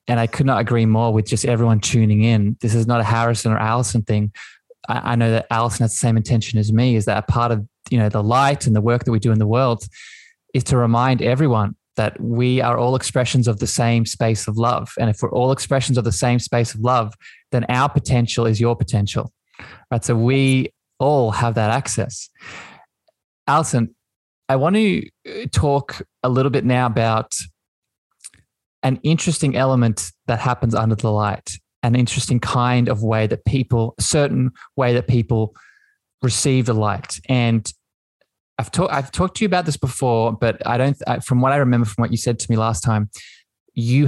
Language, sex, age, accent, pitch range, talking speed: English, male, 20-39, Australian, 110-130 Hz, 195 wpm